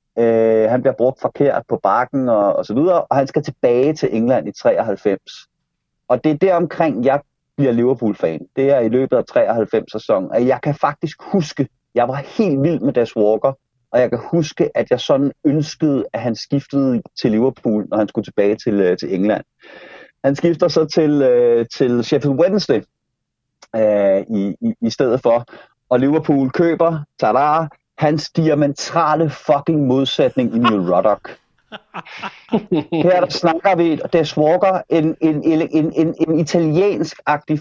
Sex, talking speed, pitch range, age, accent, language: male, 165 wpm, 130-165 Hz, 30-49, native, Danish